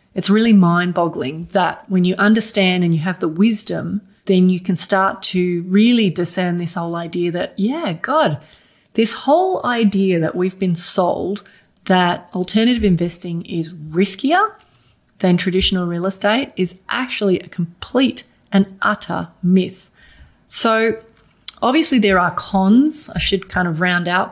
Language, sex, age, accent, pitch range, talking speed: English, female, 30-49, Australian, 175-200 Hz, 145 wpm